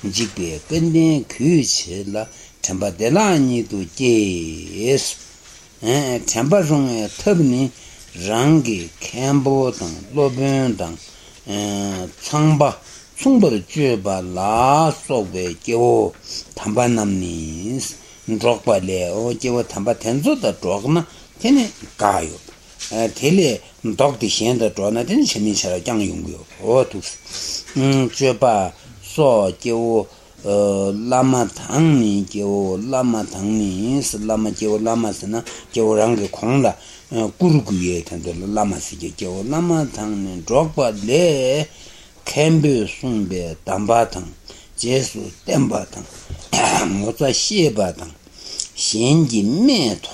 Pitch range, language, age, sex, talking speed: 100-135 Hz, Italian, 60-79, male, 70 wpm